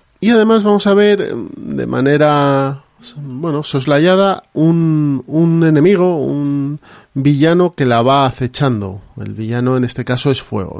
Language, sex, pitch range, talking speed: Spanish, male, 130-165 Hz, 140 wpm